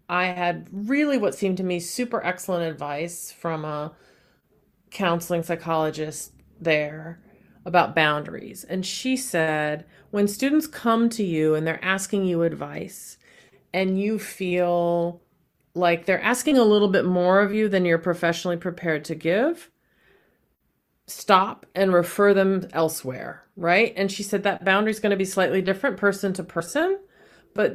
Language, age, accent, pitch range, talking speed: English, 40-59, American, 170-235 Hz, 150 wpm